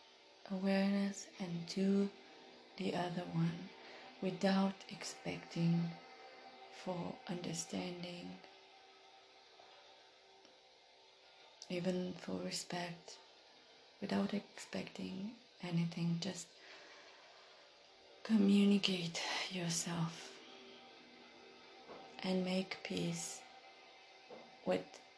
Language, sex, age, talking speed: English, female, 20-39, 55 wpm